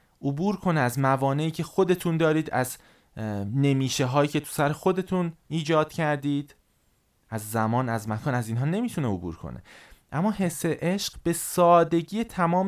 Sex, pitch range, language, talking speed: male, 115-155 Hz, Persian, 145 wpm